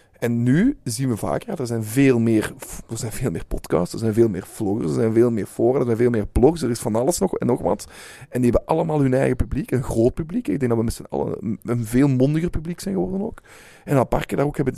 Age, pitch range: 20-39, 115-135 Hz